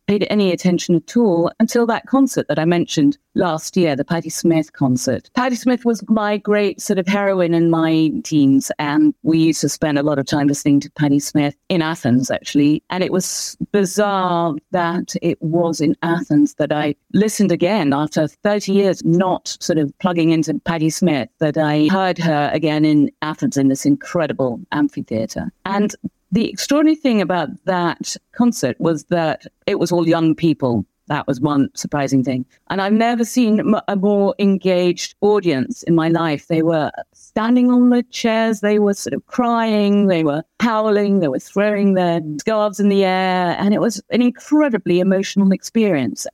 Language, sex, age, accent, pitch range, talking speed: English, female, 50-69, British, 155-205 Hz, 175 wpm